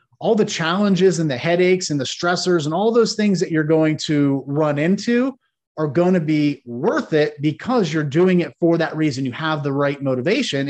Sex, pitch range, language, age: male, 145-180 Hz, English, 30-49